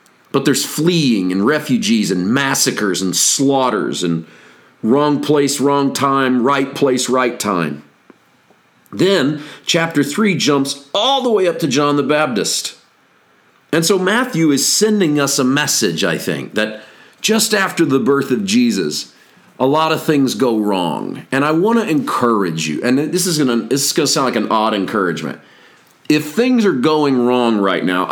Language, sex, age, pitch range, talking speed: English, male, 40-59, 115-150 Hz, 160 wpm